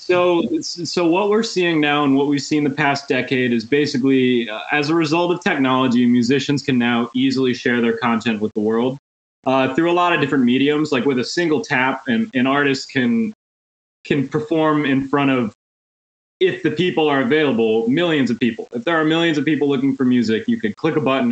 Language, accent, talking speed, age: English, American, 210 wpm, 20-39